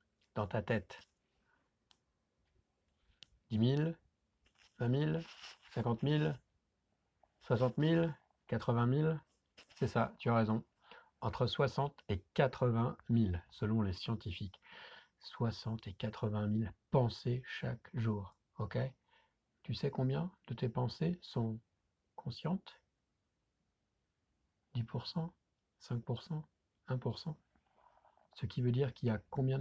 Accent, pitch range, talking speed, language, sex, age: French, 110-130 Hz, 105 wpm, French, male, 60-79